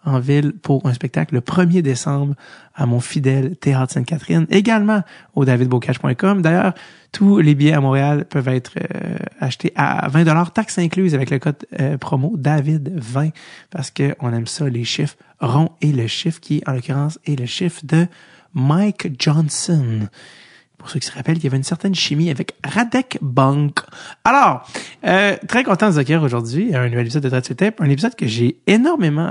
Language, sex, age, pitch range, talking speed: French, male, 30-49, 135-175 Hz, 185 wpm